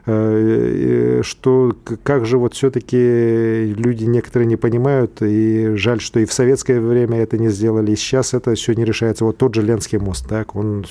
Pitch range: 110-125 Hz